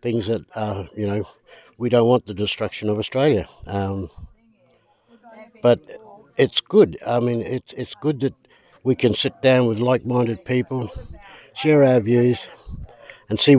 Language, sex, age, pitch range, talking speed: English, male, 60-79, 105-120 Hz, 150 wpm